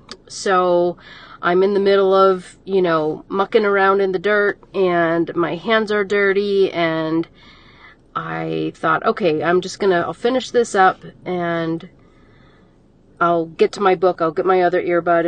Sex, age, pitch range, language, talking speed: female, 40-59, 170-200 Hz, English, 160 wpm